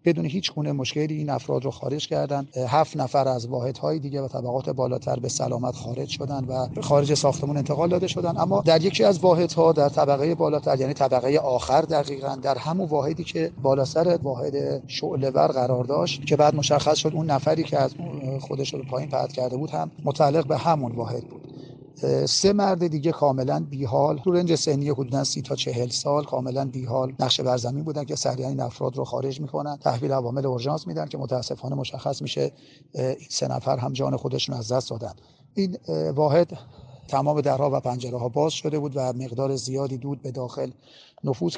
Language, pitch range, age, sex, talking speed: Persian, 130-150 Hz, 40-59, male, 185 wpm